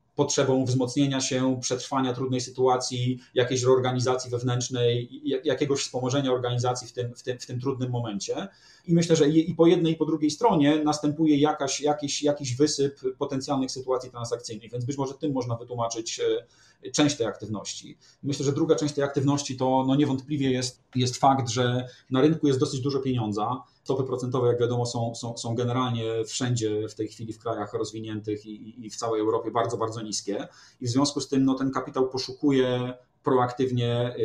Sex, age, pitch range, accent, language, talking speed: male, 30-49, 115-140 Hz, native, Polish, 165 wpm